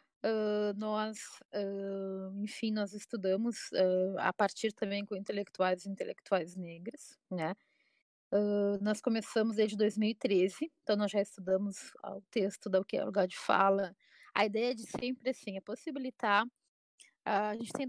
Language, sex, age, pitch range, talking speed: Portuguese, female, 20-39, 200-245 Hz, 165 wpm